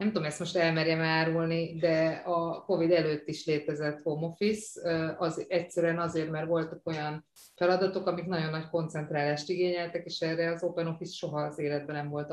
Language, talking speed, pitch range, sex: Hungarian, 175 wpm, 155-175 Hz, female